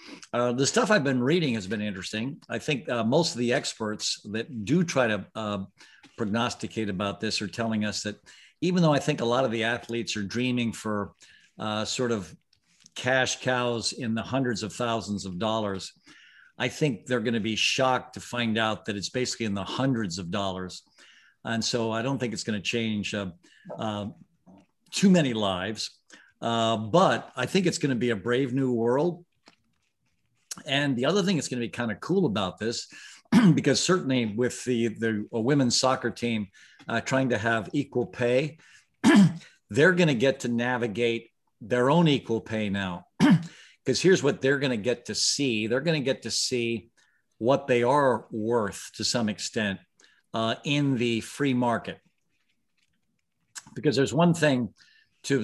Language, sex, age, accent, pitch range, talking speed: English, male, 50-69, American, 110-135 Hz, 170 wpm